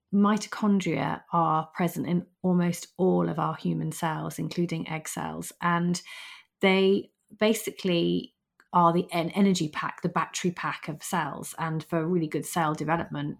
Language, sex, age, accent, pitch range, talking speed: English, female, 30-49, British, 155-180 Hz, 140 wpm